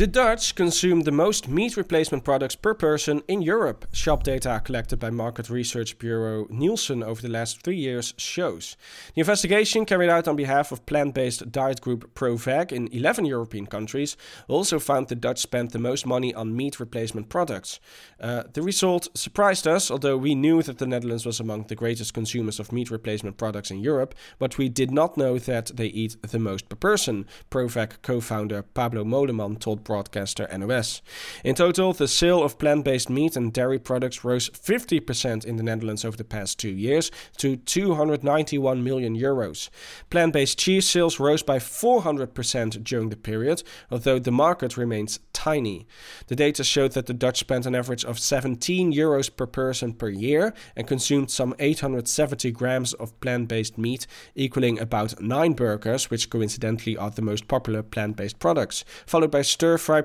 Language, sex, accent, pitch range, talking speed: English, male, Dutch, 115-150 Hz, 170 wpm